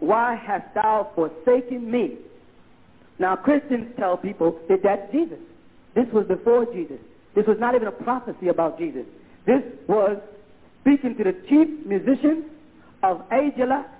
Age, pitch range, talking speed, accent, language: 40-59, 195-250 Hz, 140 wpm, American, English